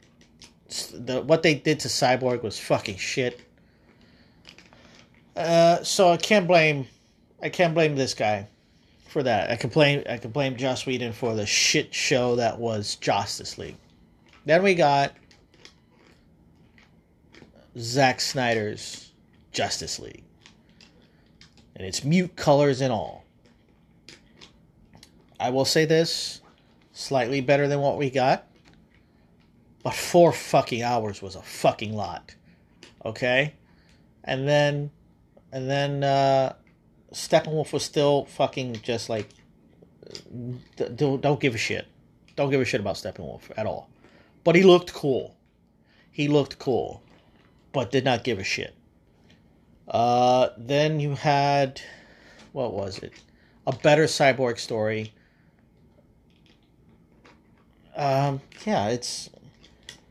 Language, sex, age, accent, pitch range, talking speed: English, male, 30-49, American, 115-145 Hz, 120 wpm